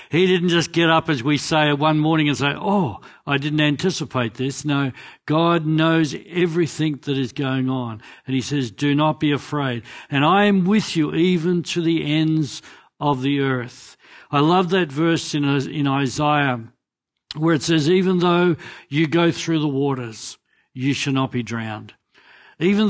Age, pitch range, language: 60-79, 130-165 Hz, English